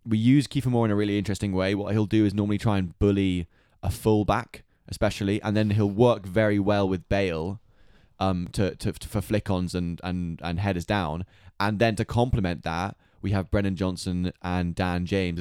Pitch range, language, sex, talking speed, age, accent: 90-110 Hz, English, male, 205 wpm, 20-39, British